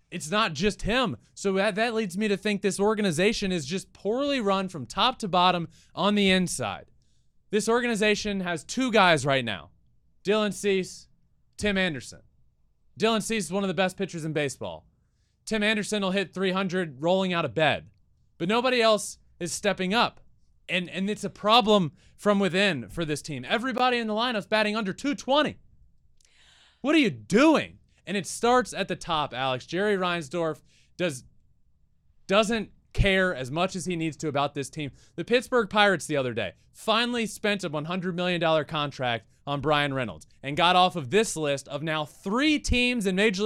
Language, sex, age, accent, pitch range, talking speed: English, male, 20-39, American, 160-220 Hz, 175 wpm